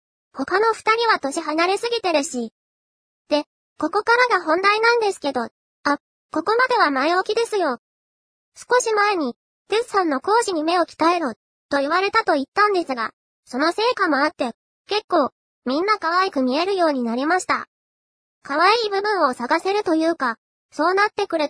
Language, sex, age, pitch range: Japanese, male, 20-39, 295-415 Hz